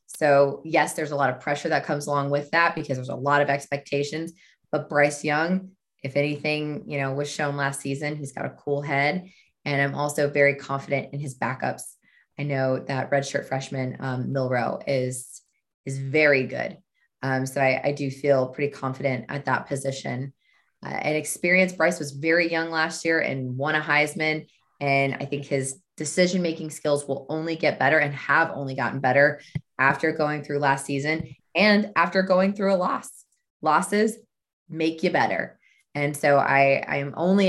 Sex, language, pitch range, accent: female, English, 140-170 Hz, American